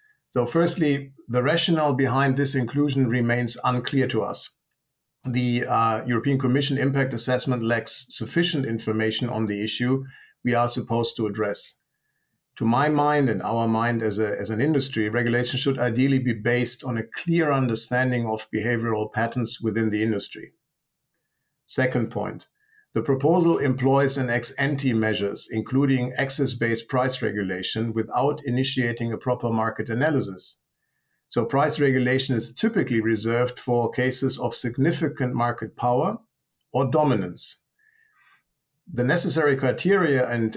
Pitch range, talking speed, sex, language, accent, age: 115-135 Hz, 135 wpm, male, English, German, 50-69